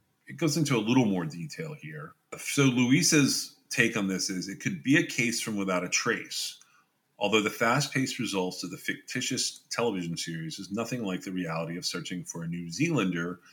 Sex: male